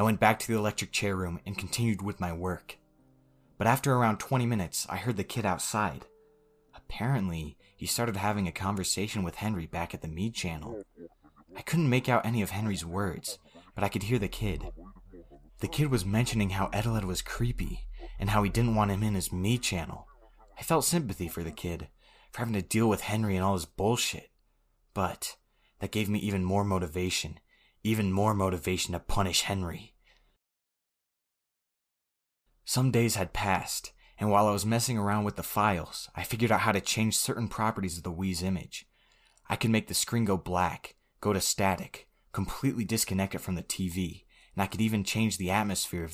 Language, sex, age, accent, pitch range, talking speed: English, male, 20-39, American, 90-110 Hz, 190 wpm